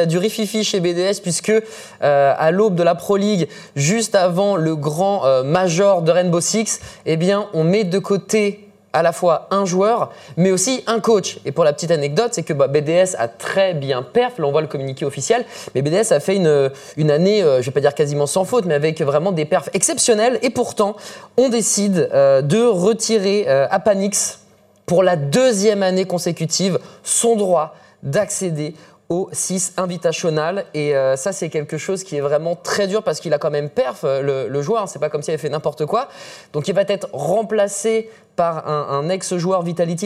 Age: 20-39